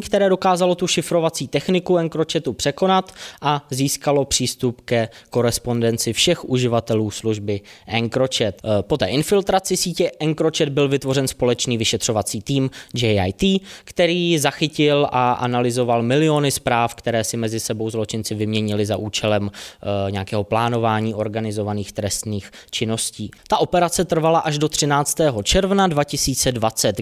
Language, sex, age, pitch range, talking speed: Czech, male, 20-39, 115-155 Hz, 120 wpm